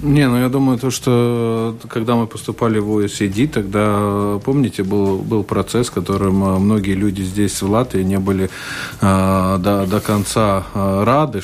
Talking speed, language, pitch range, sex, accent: 145 wpm, Russian, 100-115 Hz, male, native